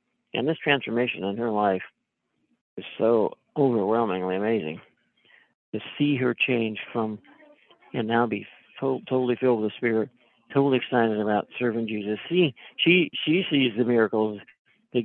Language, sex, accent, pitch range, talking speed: English, male, American, 115-135 Hz, 145 wpm